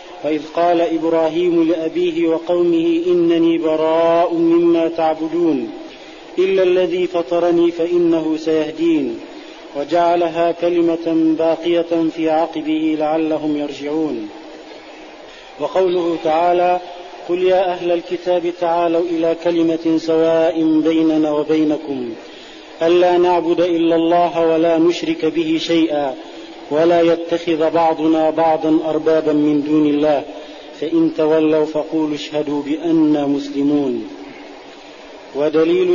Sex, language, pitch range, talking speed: male, Arabic, 160-175 Hz, 95 wpm